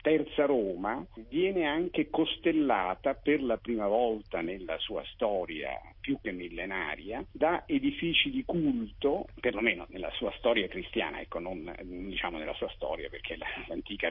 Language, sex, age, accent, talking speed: Italian, male, 50-69, native, 135 wpm